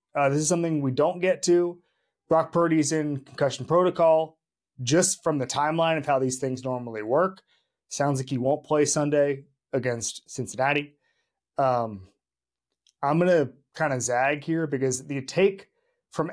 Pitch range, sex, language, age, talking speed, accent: 130-175 Hz, male, English, 30-49, 160 wpm, American